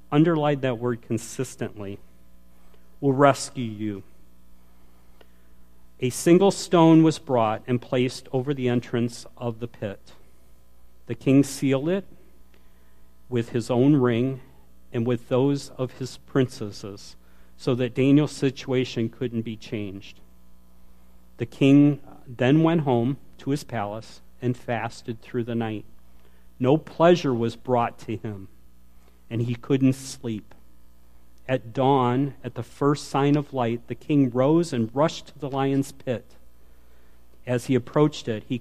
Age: 50-69